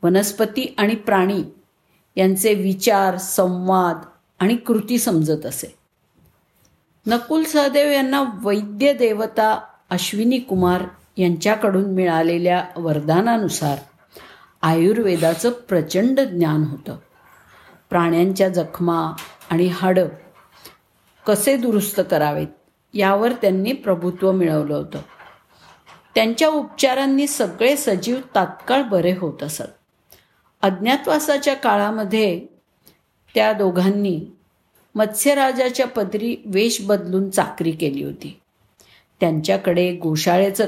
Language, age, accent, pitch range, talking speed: Marathi, 50-69, native, 180-230 Hz, 85 wpm